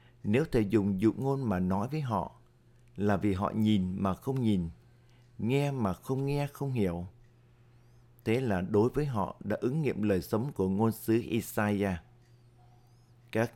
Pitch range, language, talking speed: 105-120 Hz, Vietnamese, 165 wpm